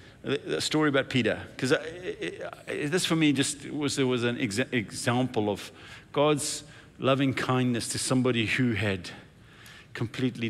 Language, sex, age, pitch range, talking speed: English, male, 50-69, 110-135 Hz, 130 wpm